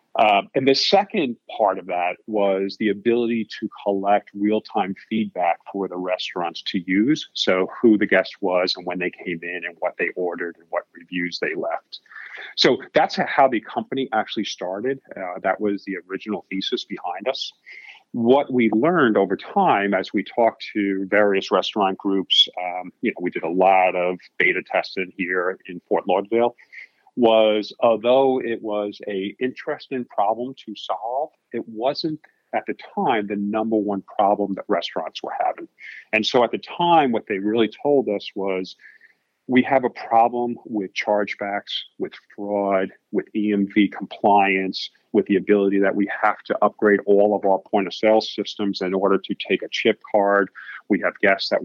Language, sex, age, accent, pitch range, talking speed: English, male, 40-59, American, 95-115 Hz, 175 wpm